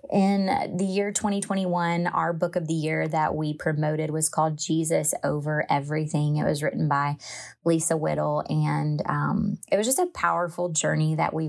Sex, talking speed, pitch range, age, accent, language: female, 170 wpm, 155-180 Hz, 20-39, American, English